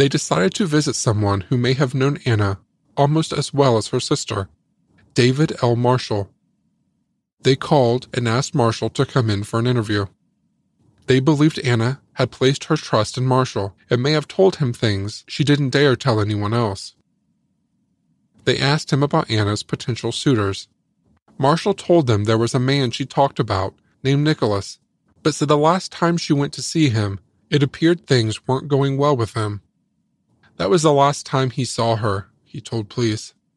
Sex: male